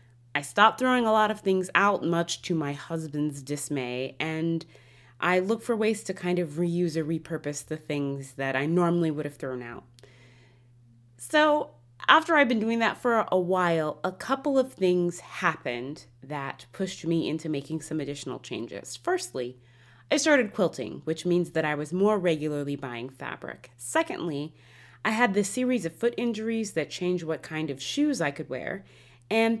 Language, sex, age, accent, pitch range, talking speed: English, female, 20-39, American, 140-205 Hz, 175 wpm